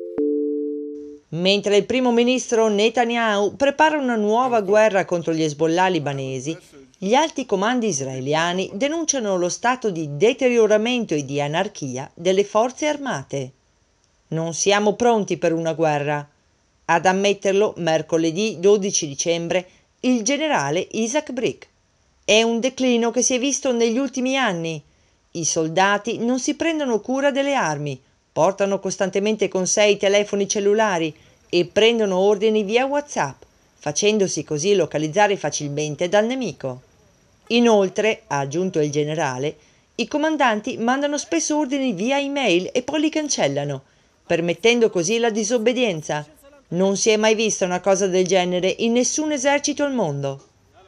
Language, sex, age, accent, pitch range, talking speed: Italian, female, 40-59, native, 165-245 Hz, 135 wpm